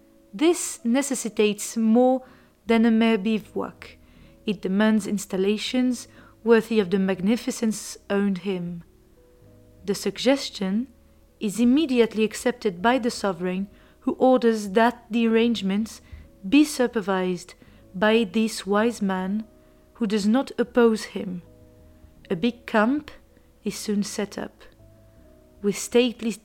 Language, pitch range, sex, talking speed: French, 195-235 Hz, female, 110 wpm